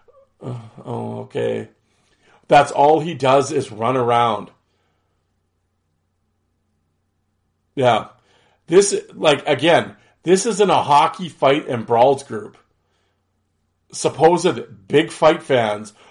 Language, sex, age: English, male, 40-59